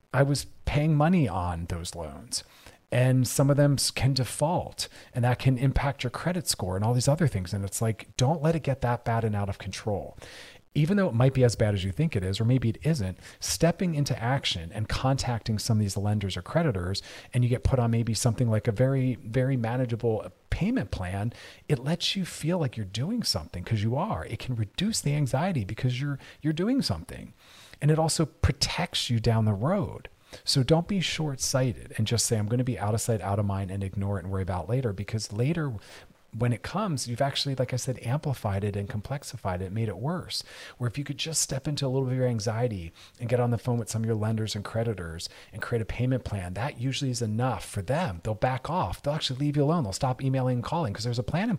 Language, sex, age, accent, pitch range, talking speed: English, male, 40-59, American, 105-140 Hz, 235 wpm